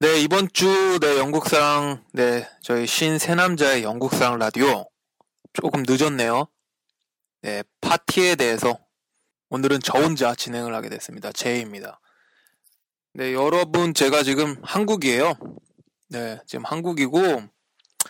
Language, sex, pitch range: Korean, male, 125-165 Hz